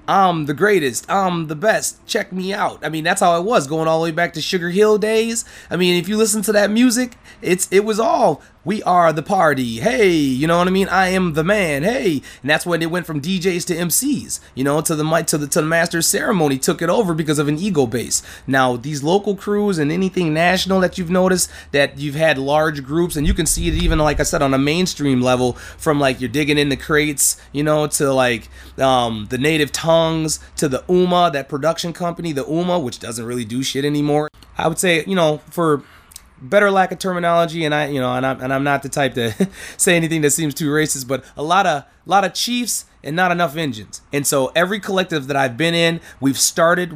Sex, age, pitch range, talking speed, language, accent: male, 30-49, 135-180 Hz, 235 wpm, English, American